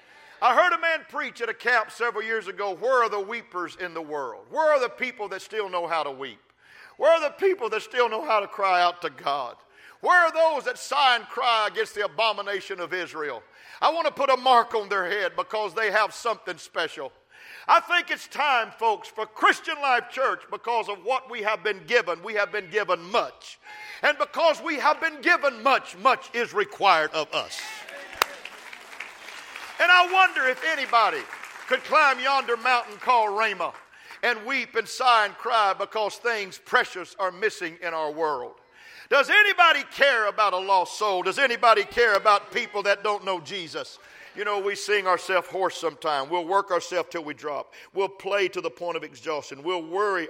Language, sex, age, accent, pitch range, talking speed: English, male, 50-69, American, 185-280 Hz, 195 wpm